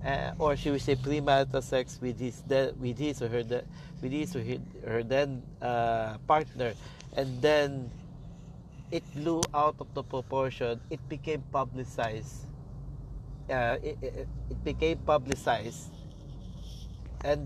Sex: male